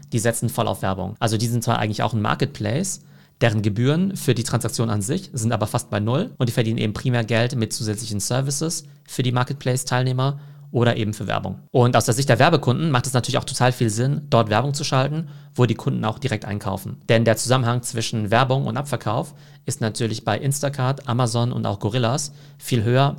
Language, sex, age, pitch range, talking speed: German, male, 40-59, 110-140 Hz, 210 wpm